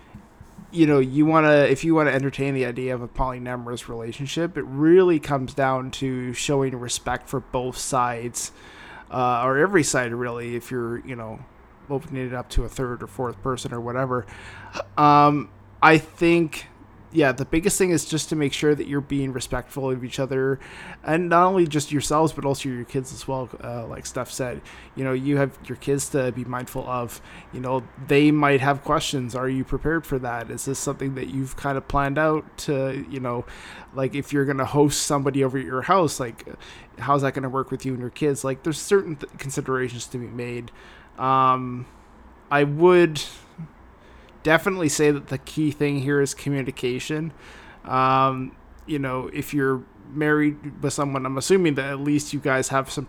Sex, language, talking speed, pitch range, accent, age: male, English, 195 wpm, 125-145 Hz, American, 20-39